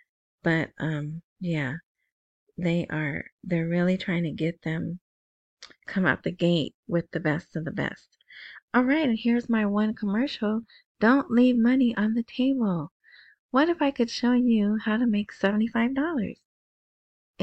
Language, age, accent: English, 30-49, American